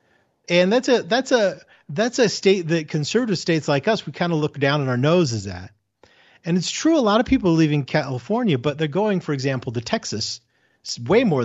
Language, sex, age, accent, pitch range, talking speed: English, male, 40-59, American, 125-185 Hz, 215 wpm